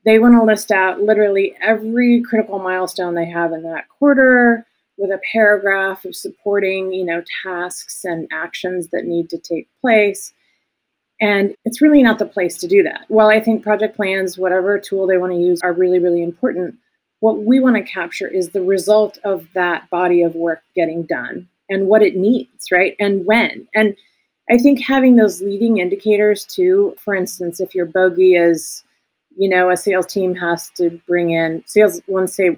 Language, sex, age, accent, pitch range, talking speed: English, female, 30-49, American, 175-220 Hz, 180 wpm